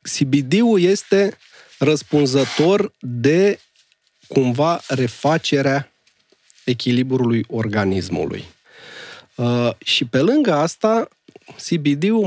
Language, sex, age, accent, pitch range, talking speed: Romanian, male, 30-49, native, 130-170 Hz, 70 wpm